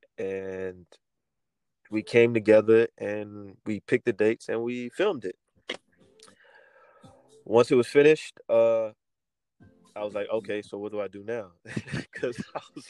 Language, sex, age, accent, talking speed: English, male, 20-39, American, 145 wpm